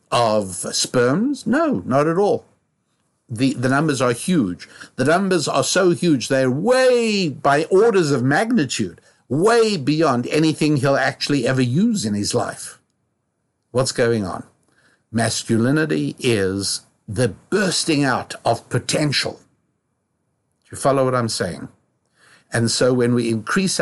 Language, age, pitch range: English, 60-79, 110-150 Hz